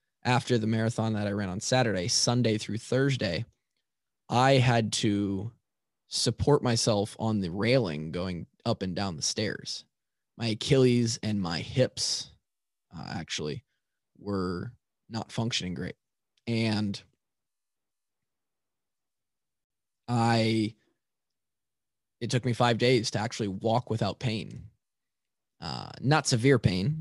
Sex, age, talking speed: male, 20-39, 115 wpm